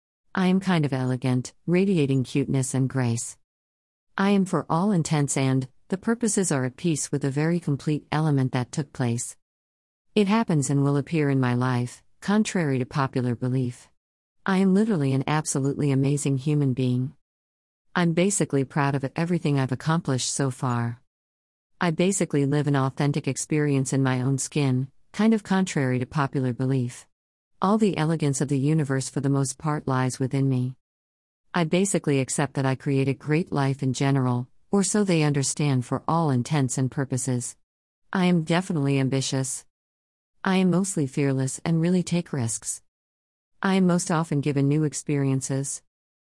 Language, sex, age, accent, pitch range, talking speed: English, female, 50-69, American, 125-155 Hz, 165 wpm